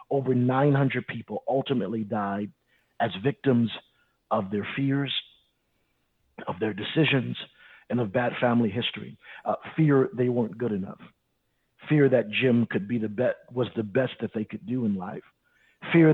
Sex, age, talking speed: male, 50-69, 155 wpm